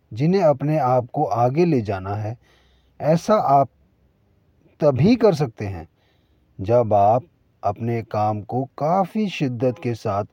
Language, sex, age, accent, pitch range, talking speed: Hindi, male, 40-59, native, 110-155 Hz, 135 wpm